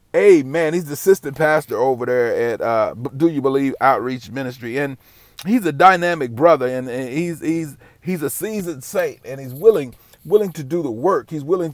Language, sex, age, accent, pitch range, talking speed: English, male, 40-59, American, 110-155 Hz, 190 wpm